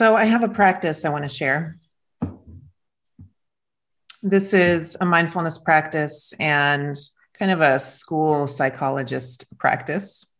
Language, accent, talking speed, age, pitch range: English, American, 120 wpm, 30-49, 145-175 Hz